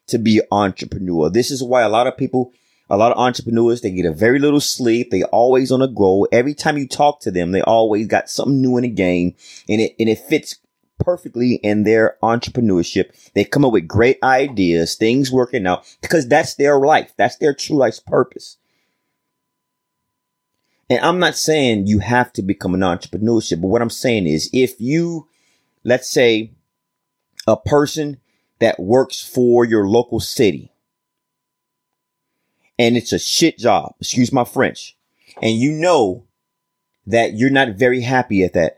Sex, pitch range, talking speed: male, 110-140 Hz, 175 wpm